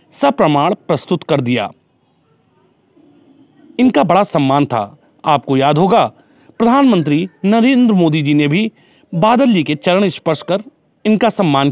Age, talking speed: 40-59, 110 wpm